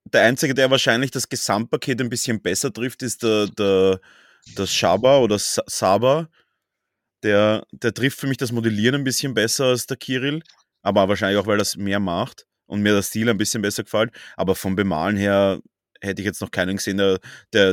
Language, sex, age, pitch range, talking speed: German, male, 30-49, 100-120 Hz, 195 wpm